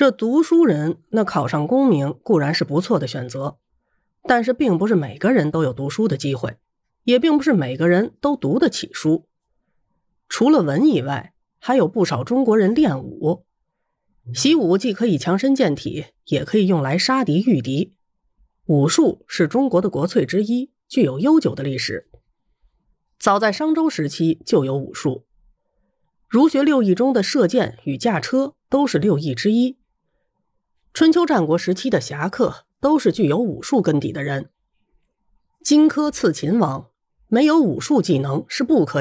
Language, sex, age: Chinese, female, 30-49